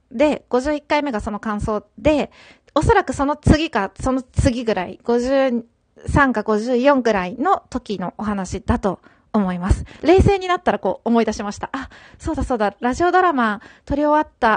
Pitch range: 215-295 Hz